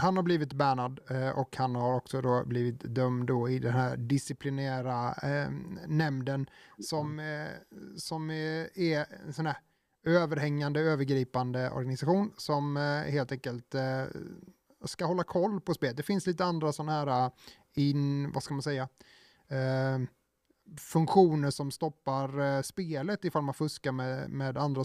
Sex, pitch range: male, 130-160 Hz